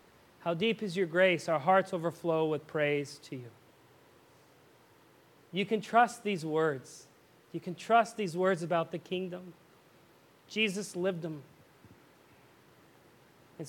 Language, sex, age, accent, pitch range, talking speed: English, male, 40-59, American, 205-300 Hz, 125 wpm